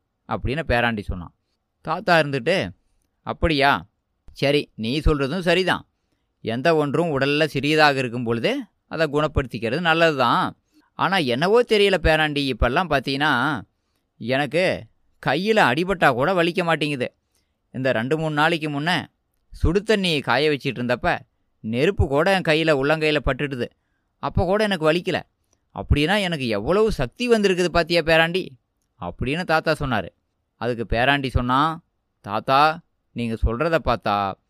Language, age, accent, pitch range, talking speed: Tamil, 20-39, native, 120-165 Hz, 120 wpm